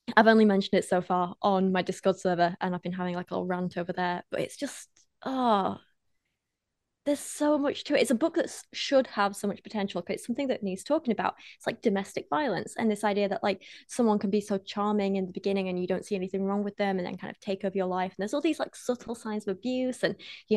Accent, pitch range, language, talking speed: British, 195-225 Hz, English, 260 wpm